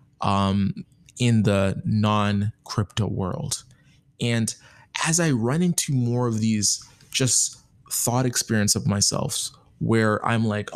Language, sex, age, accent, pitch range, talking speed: English, male, 20-39, American, 110-140 Hz, 115 wpm